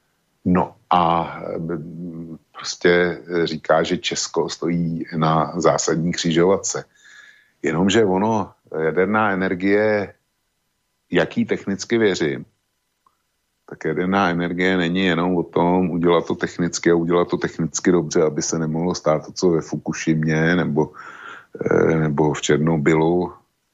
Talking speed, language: 110 wpm, Slovak